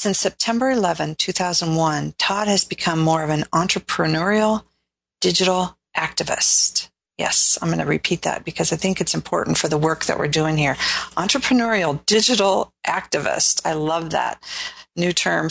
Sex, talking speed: female, 150 wpm